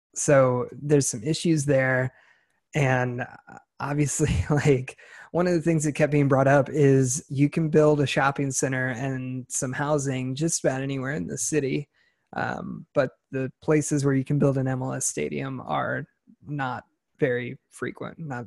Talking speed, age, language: 160 wpm, 20-39, English